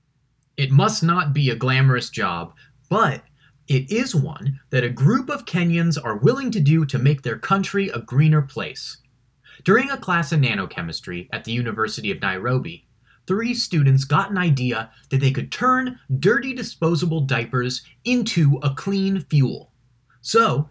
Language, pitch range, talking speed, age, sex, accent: English, 130-180 Hz, 155 wpm, 30-49, male, American